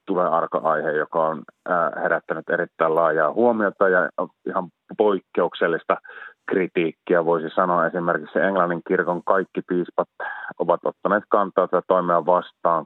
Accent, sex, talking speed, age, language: native, male, 120 wpm, 30-49, Finnish